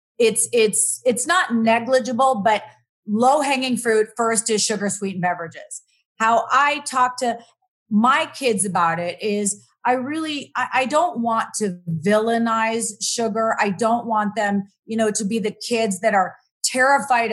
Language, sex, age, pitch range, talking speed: English, female, 30-49, 200-245 Hz, 150 wpm